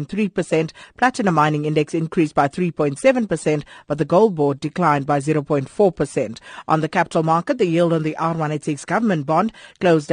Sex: female